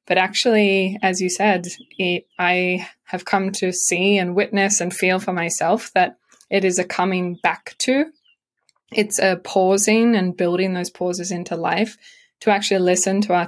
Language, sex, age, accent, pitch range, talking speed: English, female, 20-39, Australian, 175-200 Hz, 165 wpm